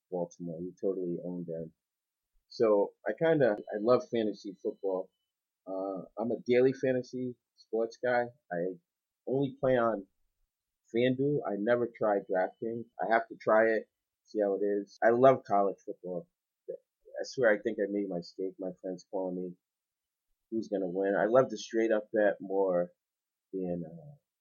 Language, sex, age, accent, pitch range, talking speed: English, male, 30-49, American, 95-115 Hz, 160 wpm